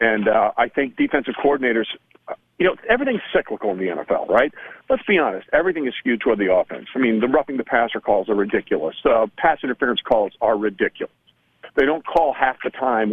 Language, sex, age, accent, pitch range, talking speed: English, male, 40-59, American, 125-185 Hz, 200 wpm